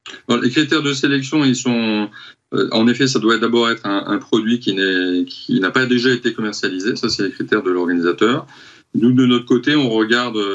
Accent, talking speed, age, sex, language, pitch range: French, 205 wpm, 40-59, male, French, 110-130 Hz